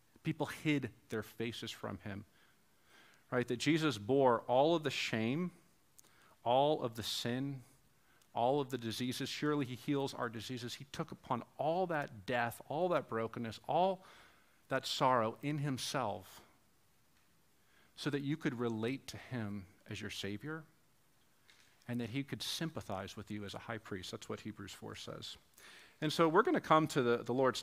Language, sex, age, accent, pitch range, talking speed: English, male, 40-59, American, 105-140 Hz, 165 wpm